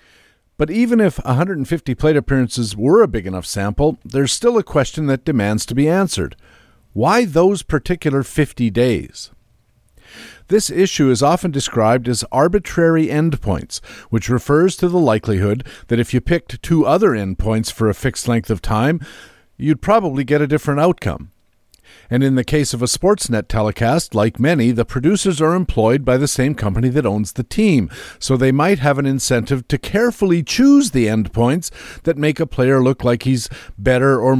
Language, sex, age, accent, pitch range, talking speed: English, male, 50-69, American, 115-155 Hz, 175 wpm